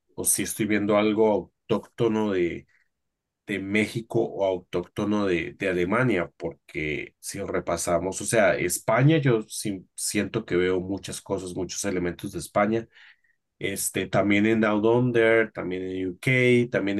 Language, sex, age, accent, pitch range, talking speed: Spanish, male, 30-49, Mexican, 95-120 Hz, 145 wpm